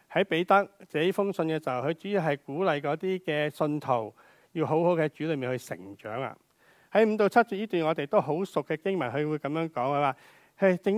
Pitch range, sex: 135-180 Hz, male